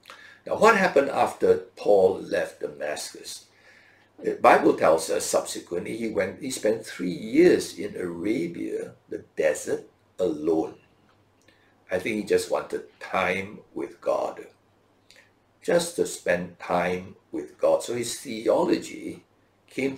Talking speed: 125 wpm